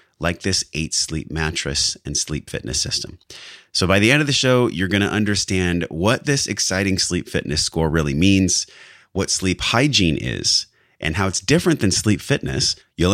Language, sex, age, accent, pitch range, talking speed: English, male, 30-49, American, 80-100 Hz, 185 wpm